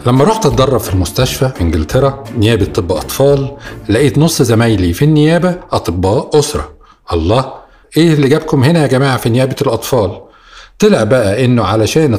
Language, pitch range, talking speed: Arabic, 105-140 Hz, 155 wpm